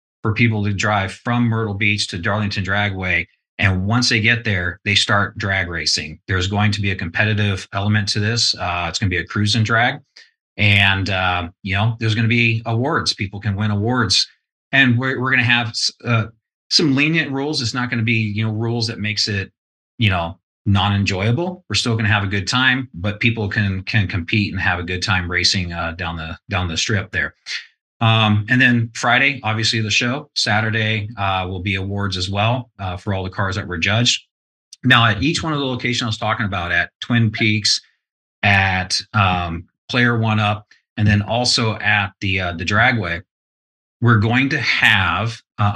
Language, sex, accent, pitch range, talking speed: English, male, American, 95-115 Hz, 195 wpm